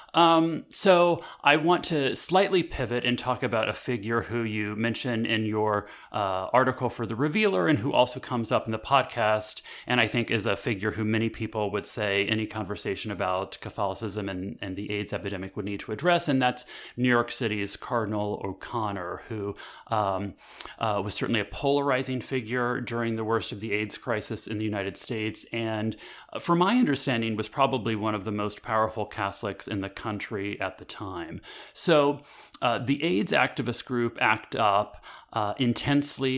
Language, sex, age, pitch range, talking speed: English, male, 30-49, 105-135 Hz, 180 wpm